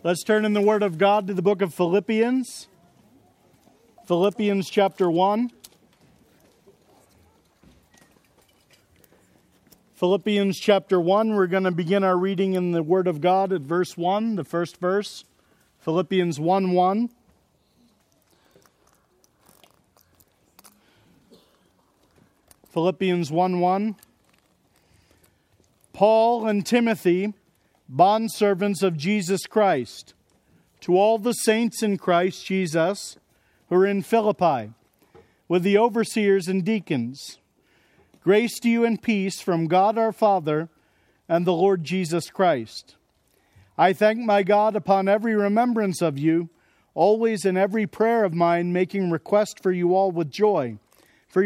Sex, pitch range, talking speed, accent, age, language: male, 175-215 Hz, 120 wpm, American, 40-59, English